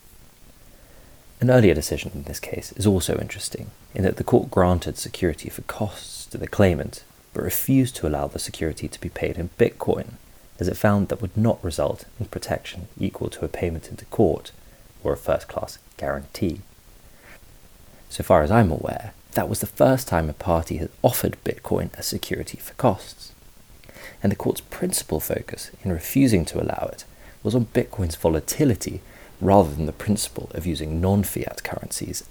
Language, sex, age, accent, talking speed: English, male, 30-49, British, 170 wpm